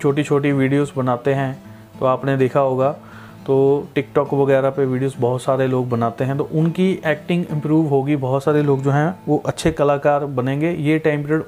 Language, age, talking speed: Hindi, 30-49, 190 wpm